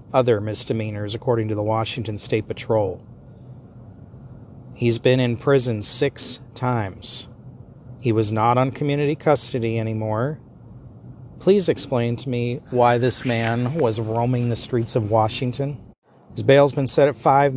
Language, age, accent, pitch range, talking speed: English, 40-59, American, 115-130 Hz, 140 wpm